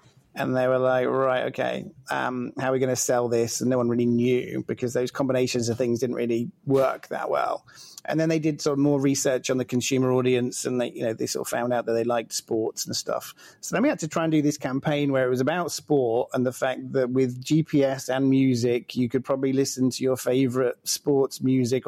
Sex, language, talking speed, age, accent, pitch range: male, English, 240 wpm, 30-49, British, 120-135 Hz